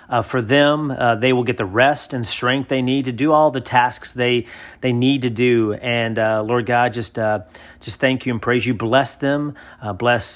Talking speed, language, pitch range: 225 wpm, English, 110-125 Hz